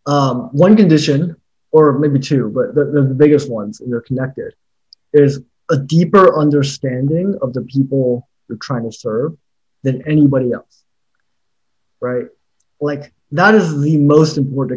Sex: male